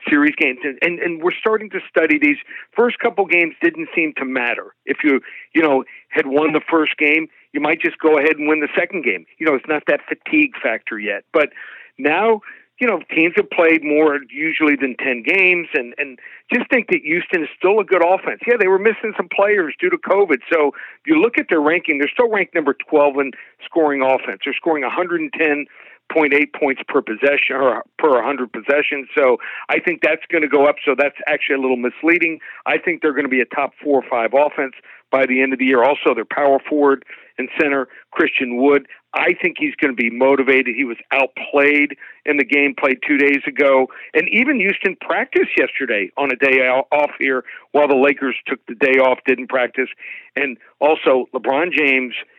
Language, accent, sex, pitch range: English, American, male, 135-180 Hz